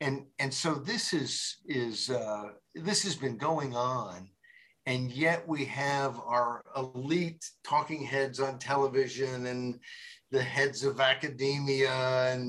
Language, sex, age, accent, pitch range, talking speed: English, male, 50-69, American, 125-160 Hz, 135 wpm